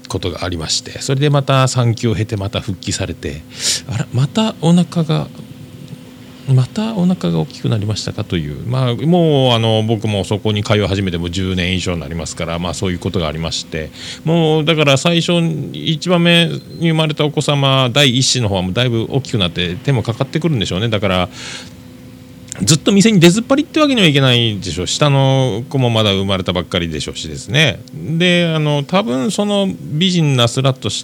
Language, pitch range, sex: Japanese, 90-155 Hz, male